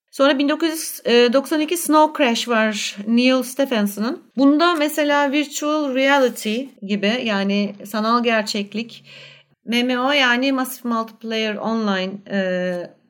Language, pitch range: Turkish, 200-240 Hz